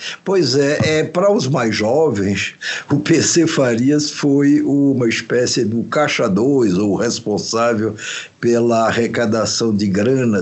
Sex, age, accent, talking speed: male, 60-79, Brazilian, 125 wpm